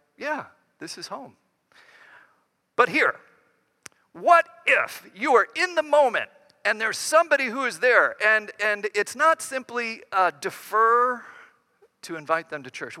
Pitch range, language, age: 160-240 Hz, English, 50-69